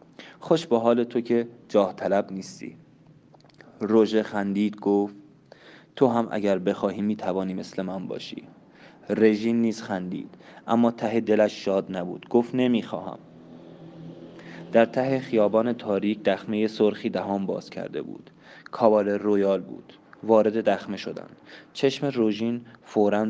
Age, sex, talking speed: 20-39, male, 125 wpm